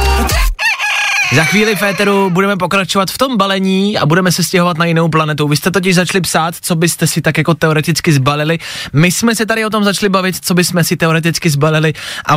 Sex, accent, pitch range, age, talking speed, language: male, native, 150-190 Hz, 20-39, 205 wpm, Czech